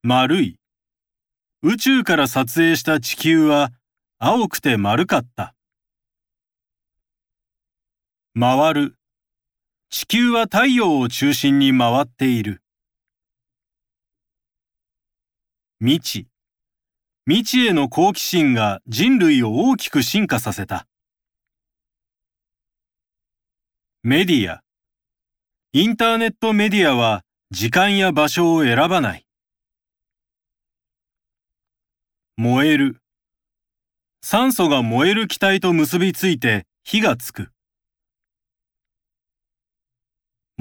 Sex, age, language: male, 40-59, Japanese